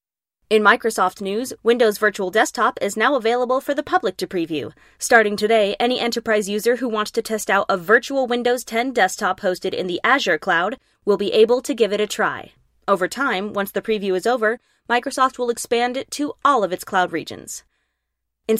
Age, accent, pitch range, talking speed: 20-39, American, 195-250 Hz, 195 wpm